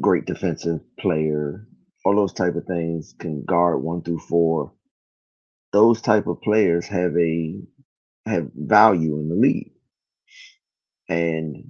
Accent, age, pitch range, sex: American, 30-49, 75-85 Hz, male